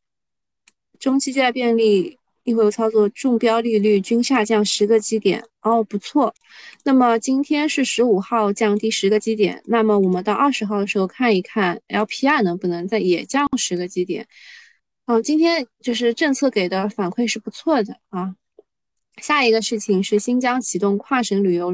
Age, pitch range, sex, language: 20-39, 200-250 Hz, female, Chinese